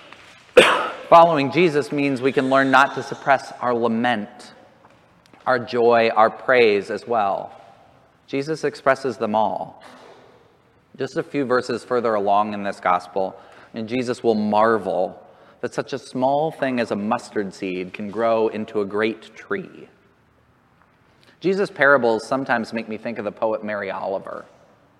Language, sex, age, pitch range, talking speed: English, male, 30-49, 110-135 Hz, 145 wpm